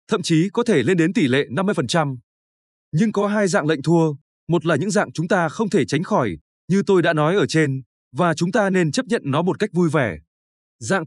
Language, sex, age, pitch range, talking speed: Vietnamese, male, 20-39, 145-200 Hz, 235 wpm